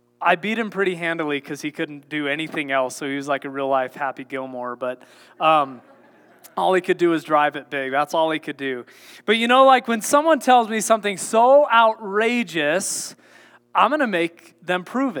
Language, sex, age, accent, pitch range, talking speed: English, male, 20-39, American, 165-230 Hz, 205 wpm